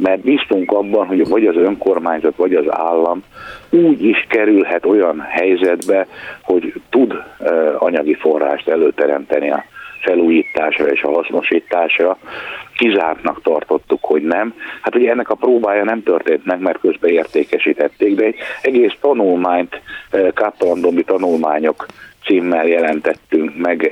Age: 60-79